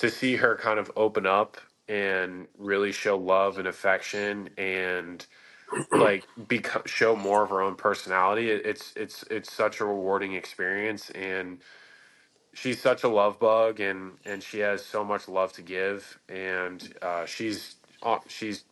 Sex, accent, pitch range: male, American, 95-105 Hz